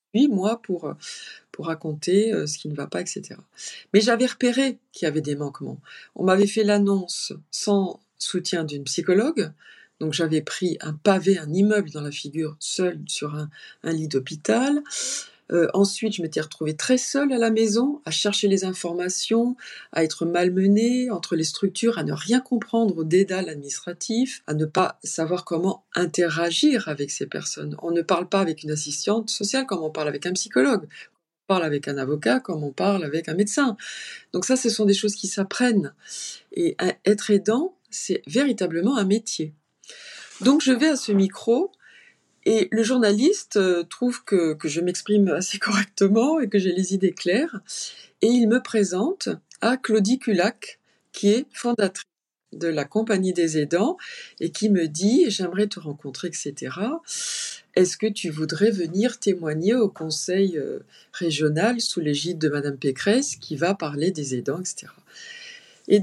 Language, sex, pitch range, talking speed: French, female, 165-230 Hz, 165 wpm